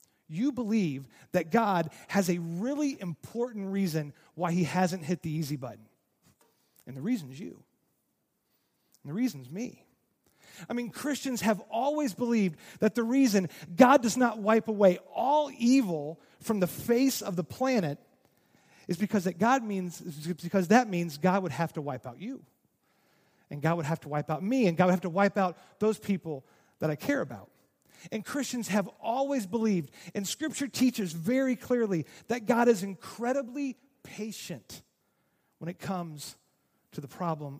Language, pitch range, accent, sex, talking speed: English, 170-240 Hz, American, male, 165 wpm